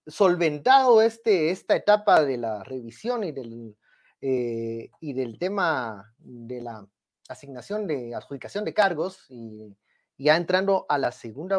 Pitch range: 135-210 Hz